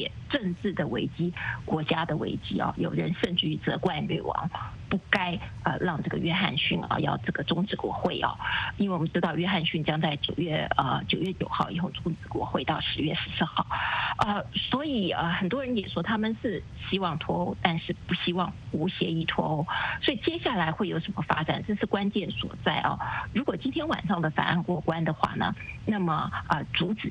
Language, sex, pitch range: English, female, 165-205 Hz